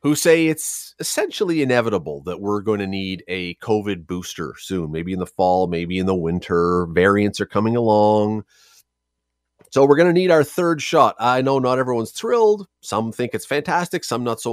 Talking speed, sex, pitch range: 190 wpm, male, 100-150 Hz